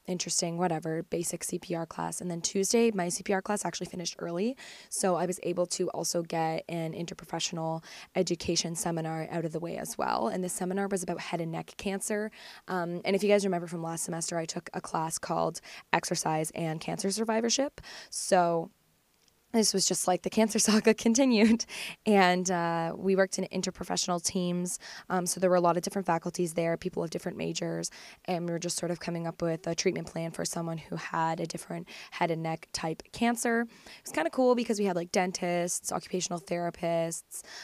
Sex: female